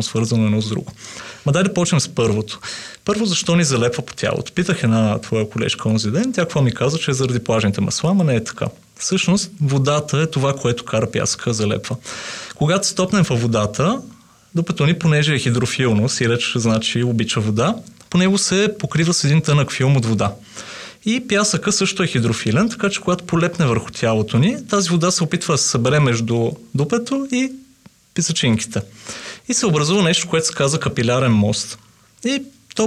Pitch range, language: 120-180 Hz, Bulgarian